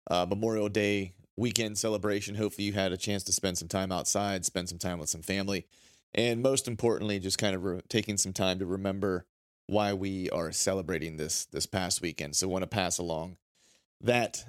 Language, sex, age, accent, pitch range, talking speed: English, male, 30-49, American, 95-110 Hz, 200 wpm